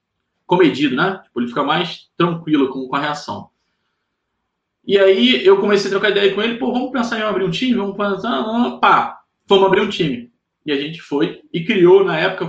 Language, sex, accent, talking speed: Portuguese, male, Brazilian, 205 wpm